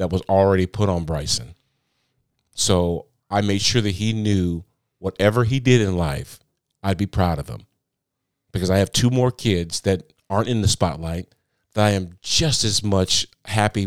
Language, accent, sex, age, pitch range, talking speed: English, American, male, 40-59, 95-115 Hz, 175 wpm